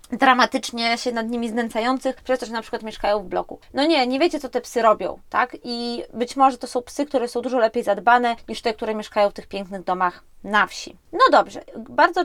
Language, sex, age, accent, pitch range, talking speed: Polish, female, 20-39, native, 225-280 Hz, 225 wpm